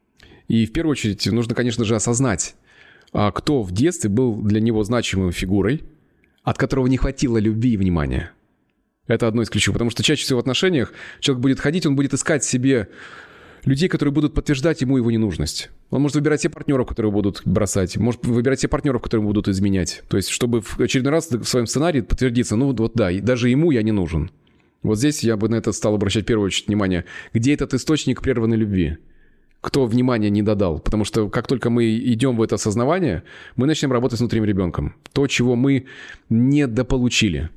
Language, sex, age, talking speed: Russian, male, 20-39, 195 wpm